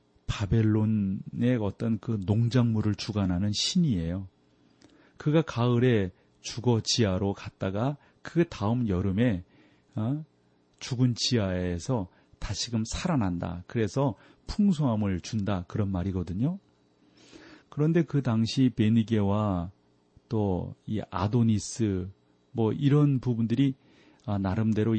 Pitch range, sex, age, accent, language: 95-125 Hz, male, 30-49, native, Korean